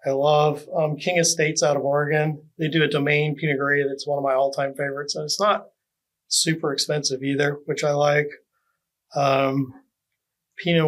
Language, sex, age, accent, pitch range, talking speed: English, male, 30-49, American, 140-160 Hz, 175 wpm